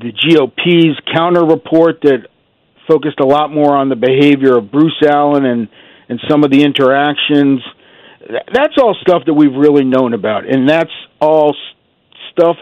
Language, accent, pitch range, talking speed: English, American, 130-160 Hz, 150 wpm